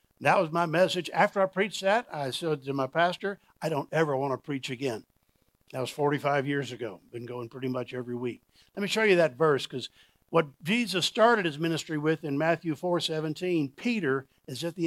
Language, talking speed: English, 205 wpm